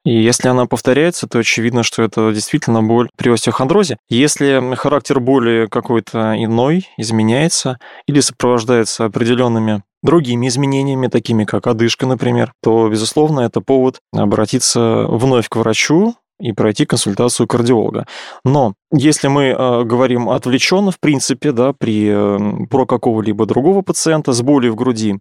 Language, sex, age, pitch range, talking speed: Russian, male, 20-39, 115-135 Hz, 140 wpm